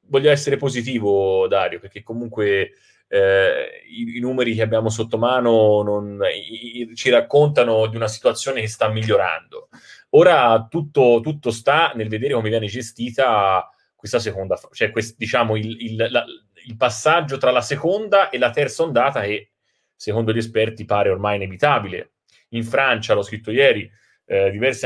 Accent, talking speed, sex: native, 140 wpm, male